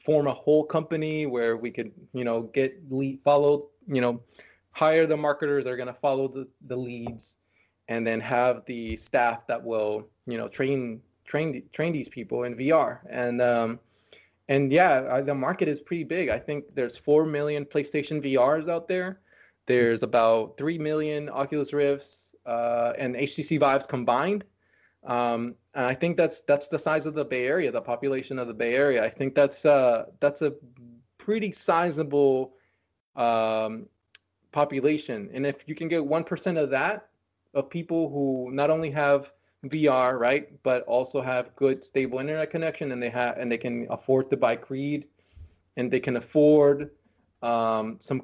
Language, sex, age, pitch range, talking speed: English, male, 20-39, 120-150 Hz, 170 wpm